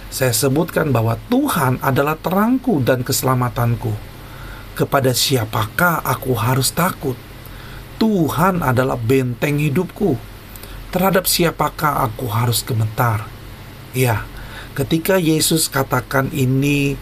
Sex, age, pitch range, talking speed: male, 40-59, 115-145 Hz, 95 wpm